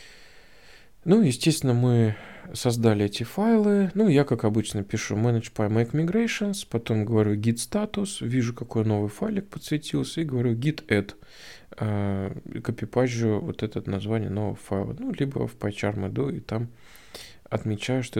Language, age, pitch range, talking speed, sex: Russian, 20-39, 110-130 Hz, 130 wpm, male